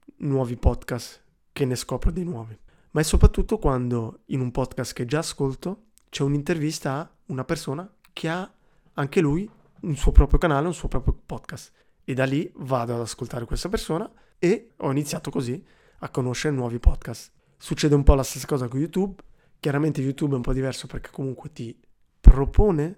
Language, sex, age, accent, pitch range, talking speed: Italian, male, 20-39, native, 130-165 Hz, 180 wpm